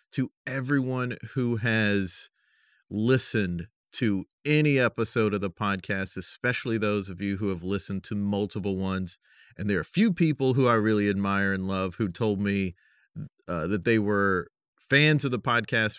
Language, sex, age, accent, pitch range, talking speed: English, male, 30-49, American, 100-135 Hz, 165 wpm